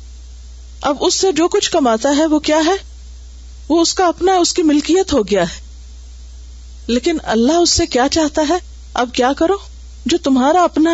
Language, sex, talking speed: Urdu, female, 185 wpm